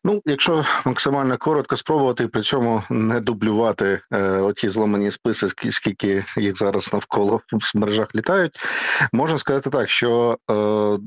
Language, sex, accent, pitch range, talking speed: Ukrainian, male, native, 100-110 Hz, 135 wpm